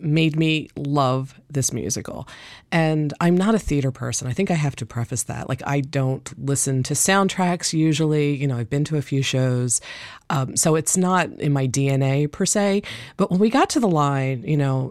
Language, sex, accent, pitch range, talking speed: English, female, American, 145-175 Hz, 205 wpm